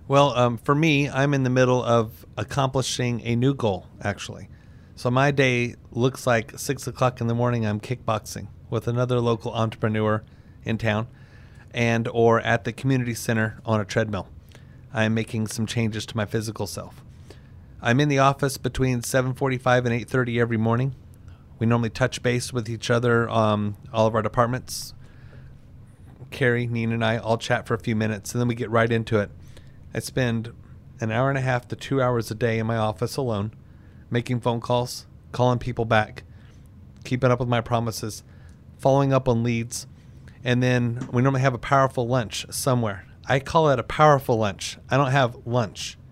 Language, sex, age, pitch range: English, male, 30-49, 110-130 Hz